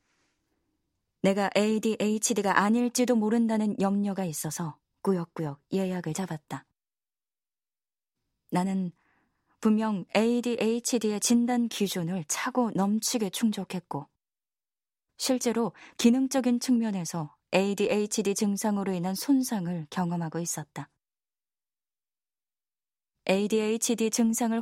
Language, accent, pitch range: Korean, native, 175-225 Hz